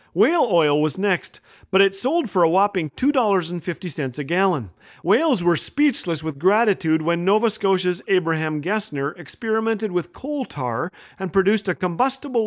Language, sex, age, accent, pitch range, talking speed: English, male, 40-59, American, 155-205 Hz, 150 wpm